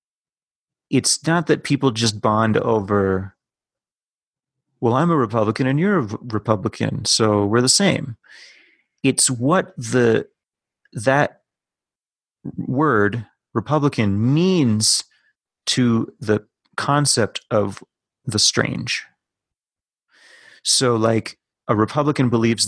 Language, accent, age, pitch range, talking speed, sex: English, American, 30-49, 105-130 Hz, 100 wpm, male